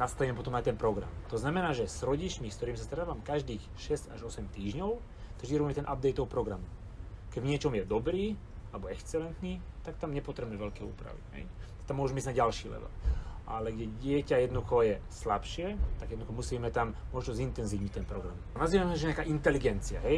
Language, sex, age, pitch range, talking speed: Slovak, male, 30-49, 105-145 Hz, 180 wpm